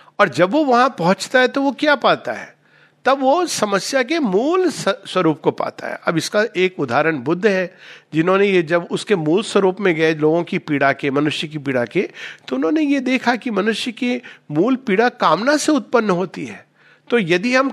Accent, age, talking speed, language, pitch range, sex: native, 50-69, 200 wpm, Hindi, 155-235 Hz, male